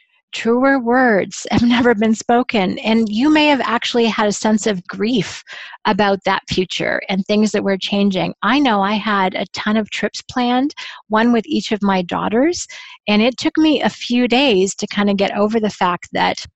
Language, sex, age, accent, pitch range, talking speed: English, female, 30-49, American, 195-255 Hz, 195 wpm